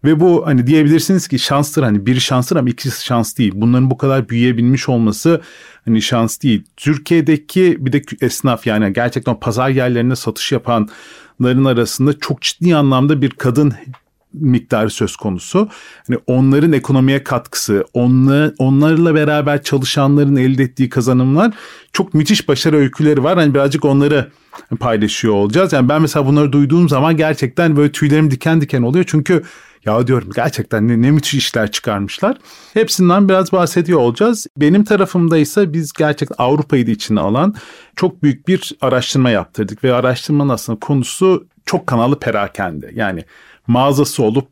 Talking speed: 145 wpm